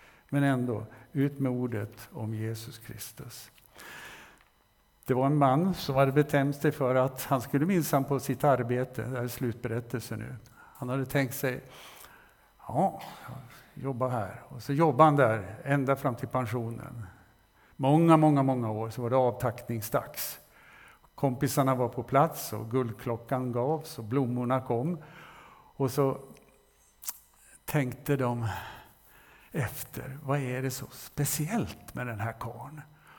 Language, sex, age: Swedish, male, 50-69